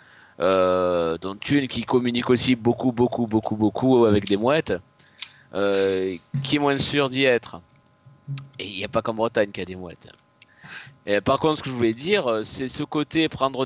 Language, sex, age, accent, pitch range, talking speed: French, male, 30-49, French, 110-135 Hz, 190 wpm